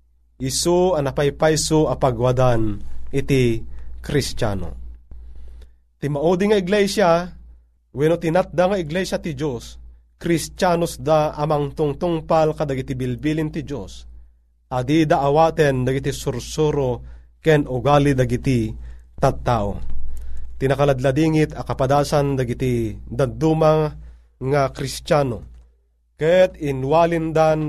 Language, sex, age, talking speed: Filipino, male, 30-49, 80 wpm